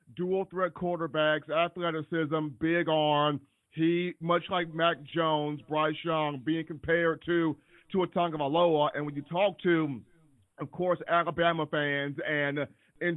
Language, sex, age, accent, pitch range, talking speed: English, male, 40-59, American, 150-175 Hz, 140 wpm